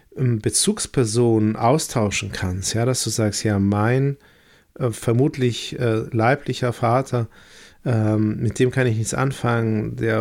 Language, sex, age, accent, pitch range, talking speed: German, male, 40-59, German, 115-140 Hz, 130 wpm